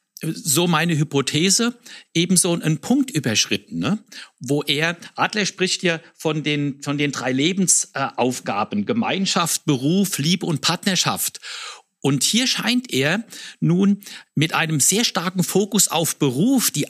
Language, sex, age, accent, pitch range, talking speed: German, male, 50-69, German, 150-200 Hz, 130 wpm